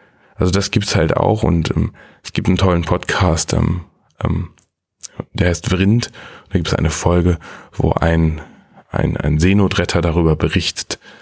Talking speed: 155 wpm